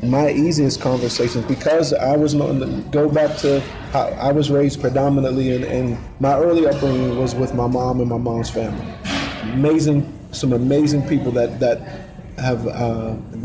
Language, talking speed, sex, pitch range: English, 160 wpm, male, 120-140 Hz